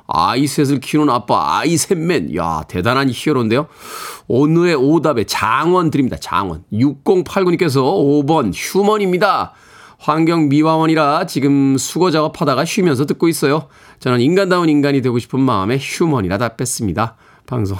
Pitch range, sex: 110-155 Hz, male